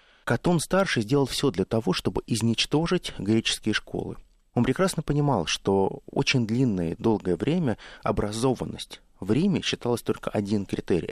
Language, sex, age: Russian, male, 30-49